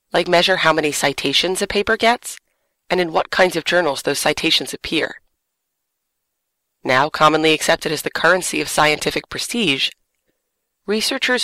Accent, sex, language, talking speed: American, female, English, 140 wpm